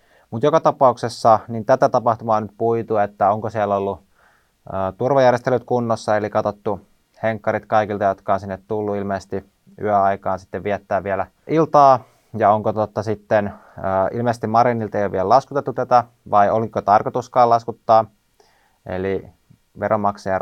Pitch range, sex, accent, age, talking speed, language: 100-115 Hz, male, native, 20-39, 130 wpm, Finnish